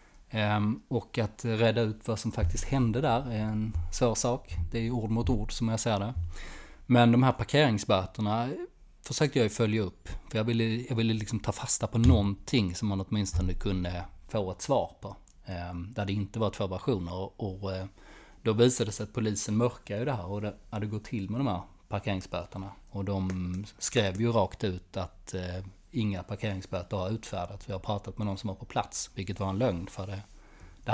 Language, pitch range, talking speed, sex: Swedish, 95-120 Hz, 195 wpm, male